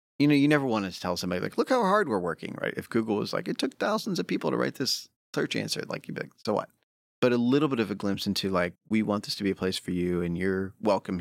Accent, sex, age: American, male, 30-49